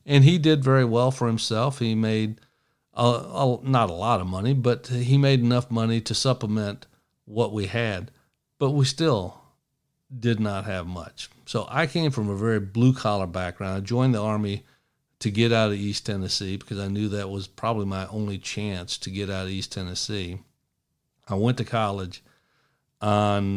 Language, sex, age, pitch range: English, male, 50-69, 100-125 Hz